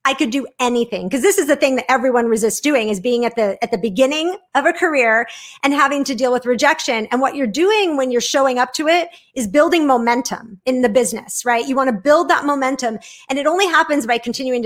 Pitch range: 235-295 Hz